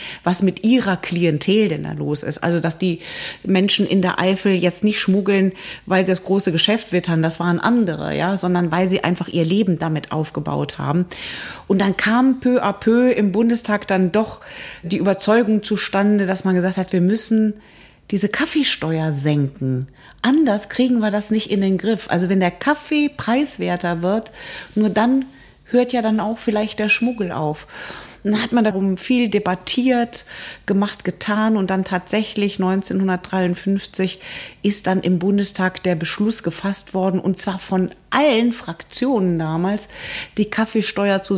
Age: 30-49